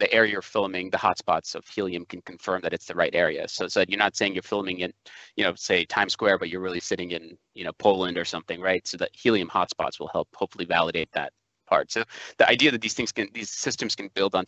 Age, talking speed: 30-49, 255 wpm